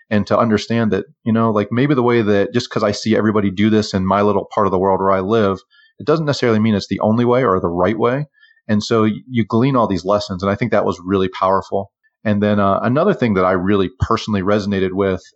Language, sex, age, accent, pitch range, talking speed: English, male, 30-49, American, 95-115 Hz, 255 wpm